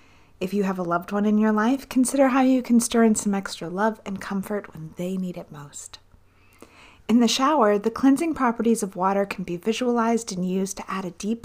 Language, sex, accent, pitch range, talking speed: English, female, American, 175-225 Hz, 220 wpm